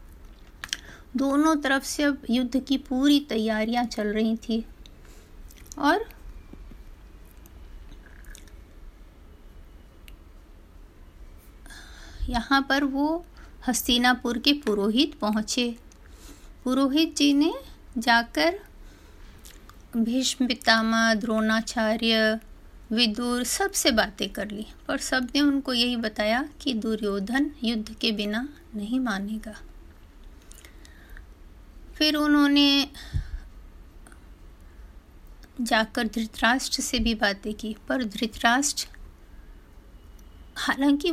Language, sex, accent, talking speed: Hindi, female, native, 80 wpm